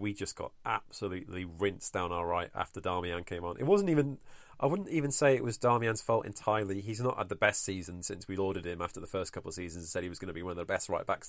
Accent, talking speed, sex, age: British, 275 wpm, male, 30-49